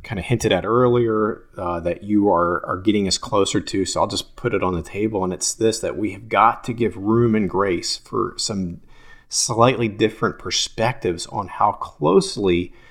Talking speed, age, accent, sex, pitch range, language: 195 wpm, 40-59, American, male, 95-120 Hz, English